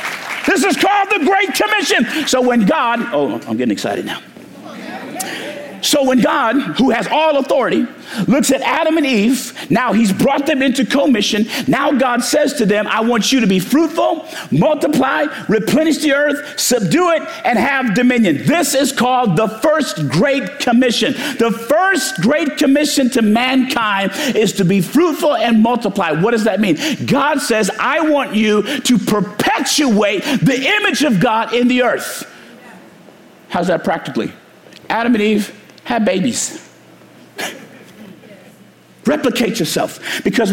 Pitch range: 215-290 Hz